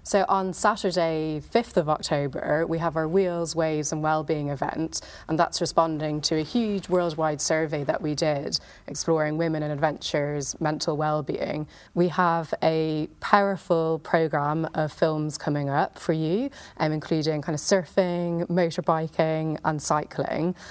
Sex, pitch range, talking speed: female, 155-175 Hz, 145 wpm